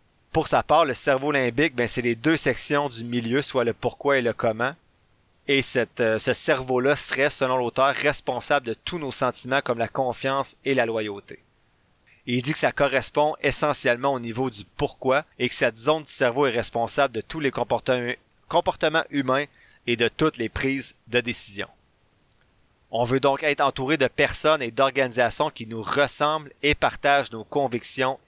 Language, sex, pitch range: French, male, 120-145 Hz